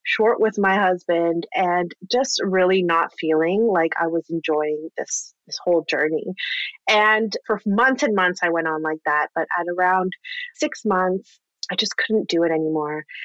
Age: 30-49